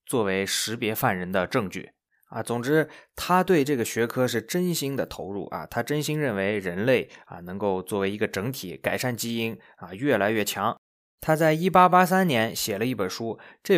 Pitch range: 105-150 Hz